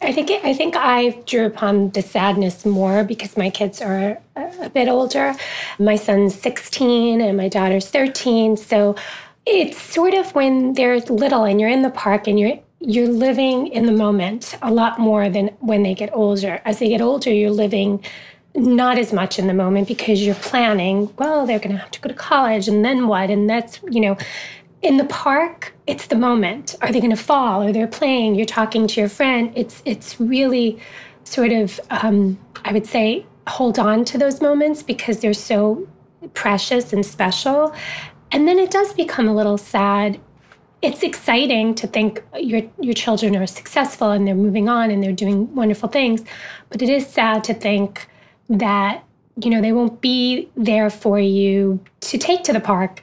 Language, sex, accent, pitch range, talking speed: English, female, American, 205-255 Hz, 190 wpm